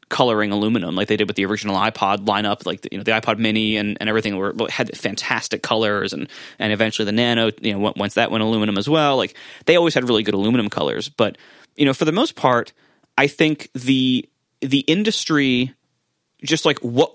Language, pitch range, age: English, 115-150 Hz, 30-49